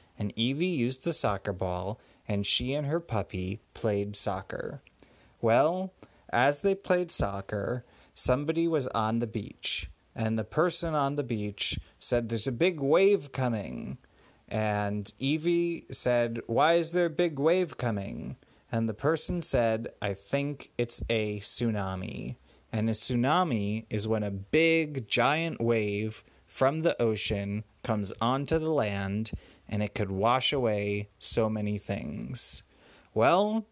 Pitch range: 105-140 Hz